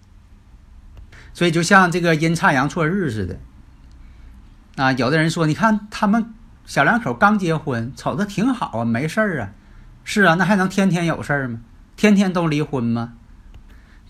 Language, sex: Chinese, male